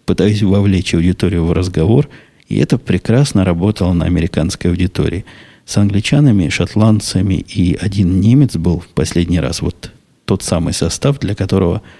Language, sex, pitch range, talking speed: Russian, male, 90-110 Hz, 140 wpm